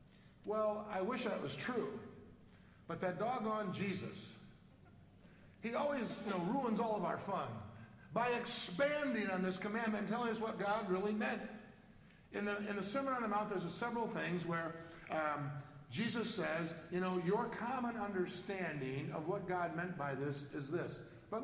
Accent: American